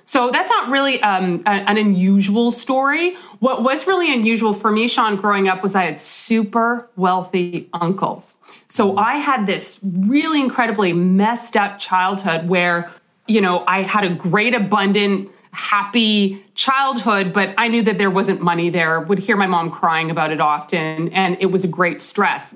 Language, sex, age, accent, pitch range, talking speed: English, female, 30-49, American, 185-235 Hz, 170 wpm